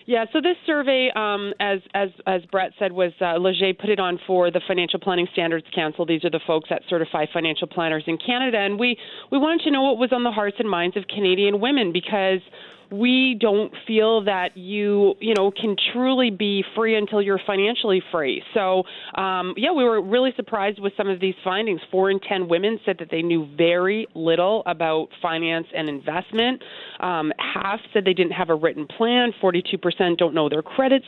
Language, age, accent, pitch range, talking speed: English, 30-49, American, 180-230 Hz, 200 wpm